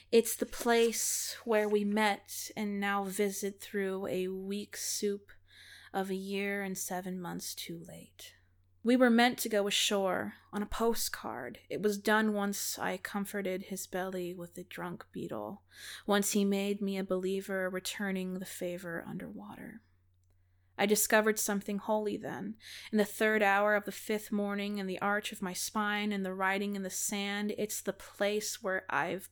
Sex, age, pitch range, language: female, 20-39, 190-210 Hz, English